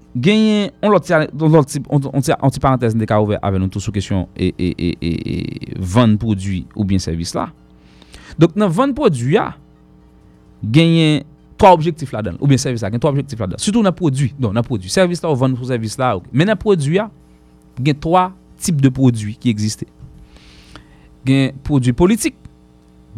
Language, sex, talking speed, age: English, male, 155 wpm, 30-49